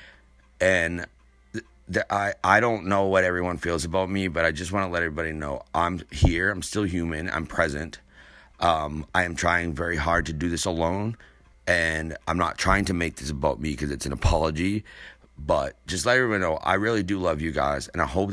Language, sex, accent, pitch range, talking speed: English, male, American, 80-95 Hz, 205 wpm